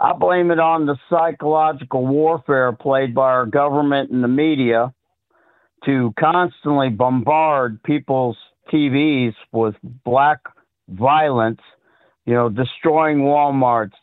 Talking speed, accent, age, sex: 110 wpm, American, 50-69, male